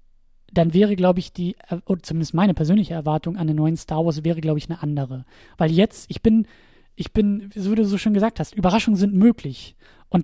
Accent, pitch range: German, 170-205 Hz